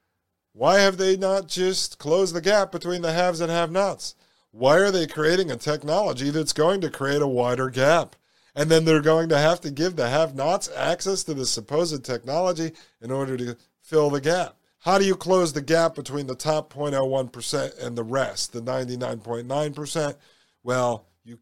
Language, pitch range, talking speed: English, 125-175 Hz, 180 wpm